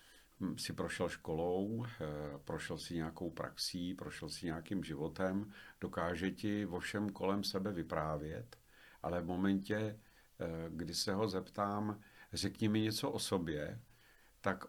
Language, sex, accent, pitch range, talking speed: Czech, male, native, 90-110 Hz, 125 wpm